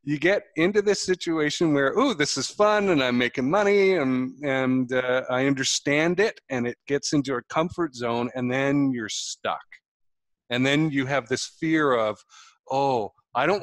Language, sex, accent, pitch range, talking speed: English, male, American, 120-145 Hz, 180 wpm